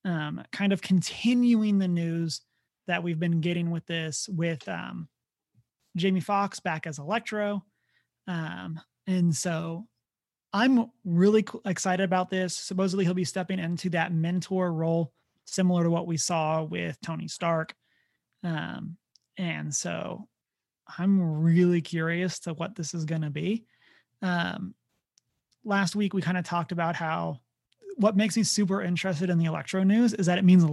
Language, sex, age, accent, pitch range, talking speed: English, male, 30-49, American, 165-200 Hz, 150 wpm